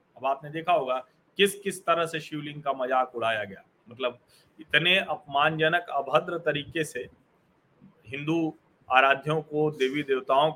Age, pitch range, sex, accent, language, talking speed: 40-59, 145-195 Hz, male, native, Hindi, 135 wpm